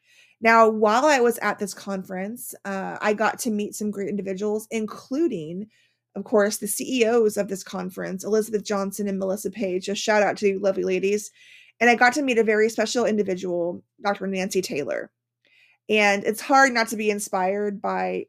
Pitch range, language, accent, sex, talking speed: 195-235 Hz, English, American, female, 180 wpm